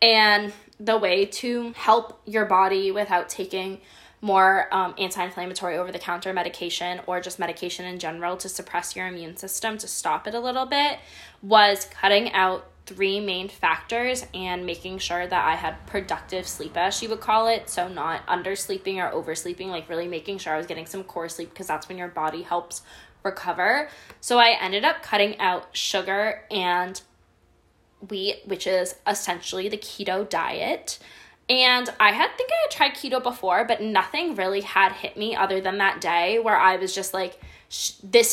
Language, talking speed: English, 175 wpm